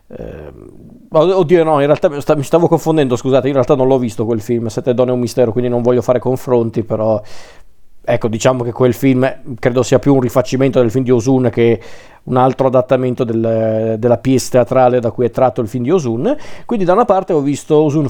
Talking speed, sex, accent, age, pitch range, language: 215 wpm, male, native, 40-59, 120-140 Hz, Italian